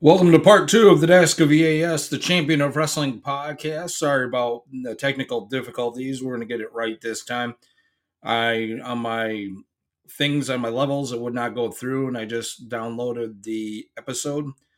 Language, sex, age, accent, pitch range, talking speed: English, male, 30-49, American, 115-155 Hz, 180 wpm